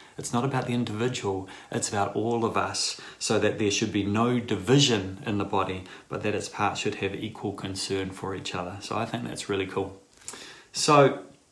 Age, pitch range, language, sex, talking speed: 20-39, 100-125 Hz, English, male, 200 wpm